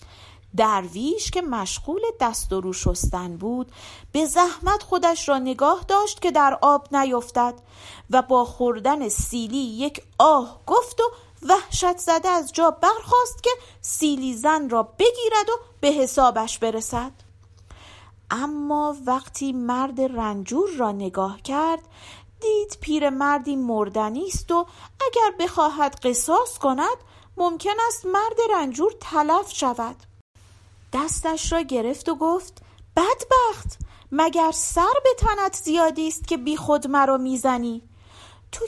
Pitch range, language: 245-385 Hz, Persian